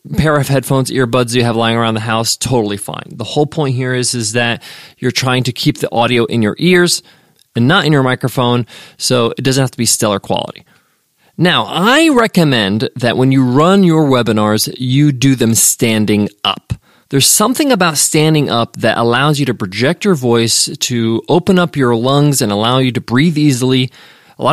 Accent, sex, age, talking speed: American, male, 20-39, 195 wpm